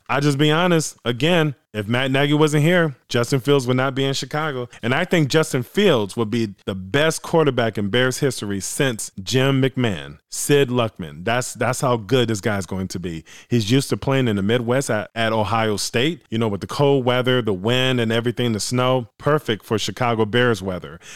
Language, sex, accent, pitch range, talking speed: English, male, American, 110-145 Hz, 205 wpm